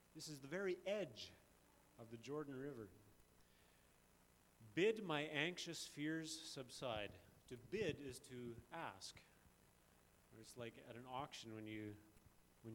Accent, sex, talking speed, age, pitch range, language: American, male, 125 wpm, 30-49, 105-155 Hz, English